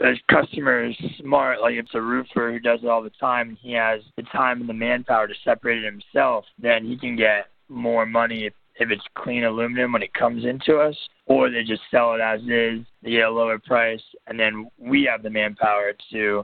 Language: English